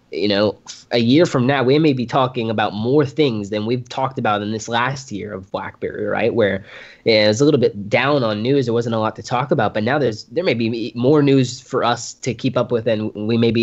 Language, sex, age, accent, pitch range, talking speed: English, male, 20-39, American, 105-120 Hz, 255 wpm